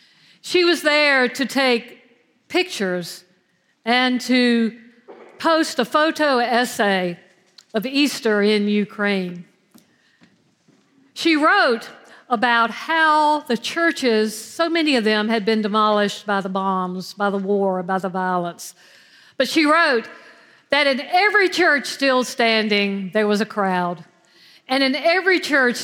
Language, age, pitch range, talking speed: English, 50-69, 200-260 Hz, 130 wpm